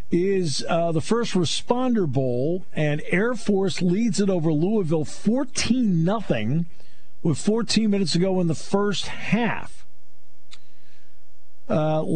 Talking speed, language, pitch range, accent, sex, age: 120 wpm, English, 135-185 Hz, American, male, 50-69